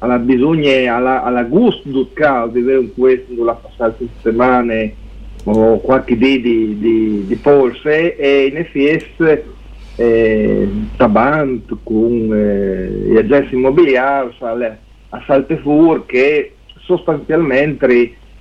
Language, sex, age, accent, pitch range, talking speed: Italian, male, 40-59, native, 120-145 Hz, 100 wpm